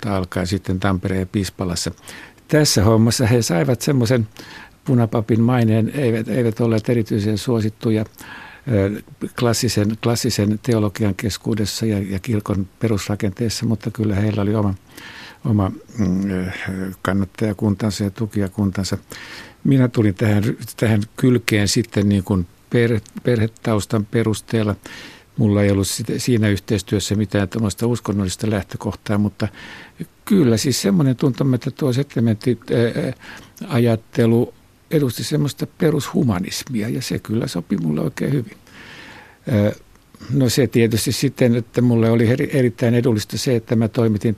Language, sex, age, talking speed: Finnish, male, 60-79, 120 wpm